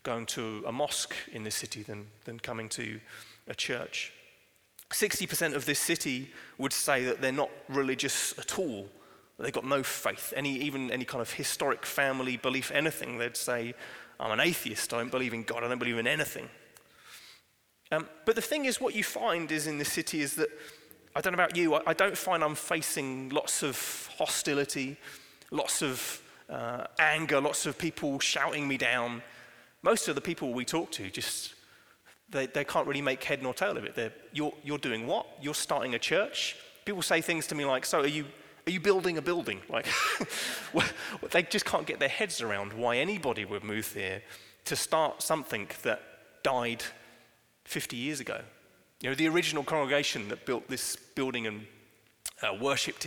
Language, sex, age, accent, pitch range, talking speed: English, male, 30-49, British, 120-155 Hz, 185 wpm